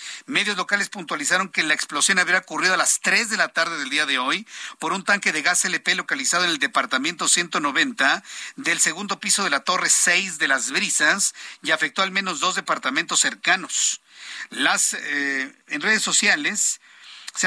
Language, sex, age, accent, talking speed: Spanish, male, 50-69, Mexican, 180 wpm